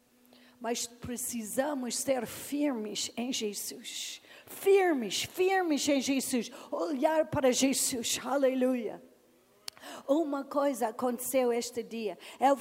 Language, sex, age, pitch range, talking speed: Portuguese, female, 40-59, 240-295 Hz, 95 wpm